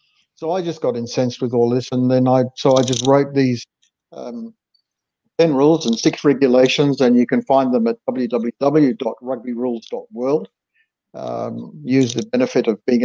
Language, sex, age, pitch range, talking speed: English, male, 60-79, 130-180 Hz, 160 wpm